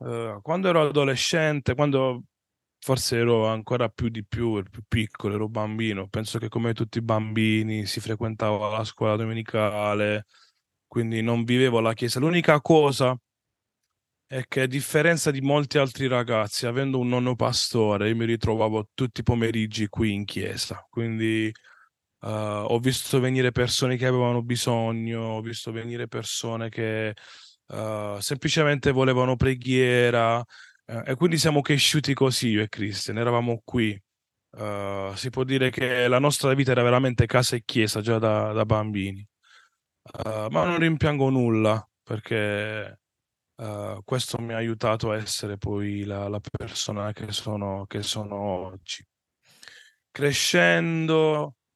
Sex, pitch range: male, 110-130 Hz